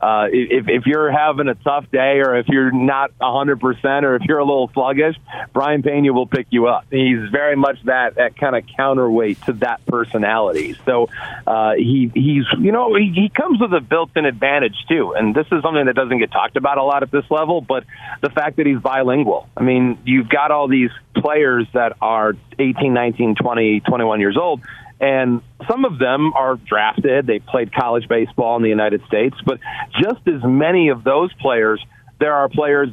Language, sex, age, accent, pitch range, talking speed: English, male, 40-59, American, 120-145 Hz, 200 wpm